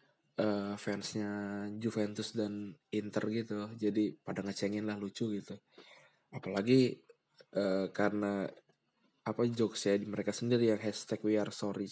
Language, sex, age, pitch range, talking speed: Indonesian, male, 20-39, 100-115 Hz, 130 wpm